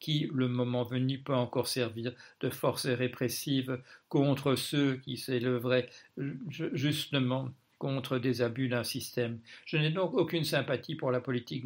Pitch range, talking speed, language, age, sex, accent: 125-140 Hz, 145 wpm, French, 60-79, male, French